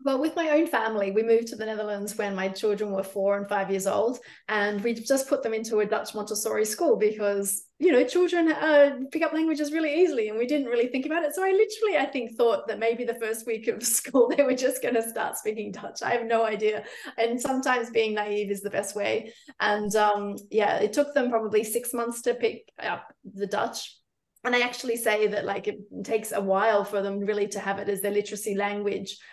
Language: English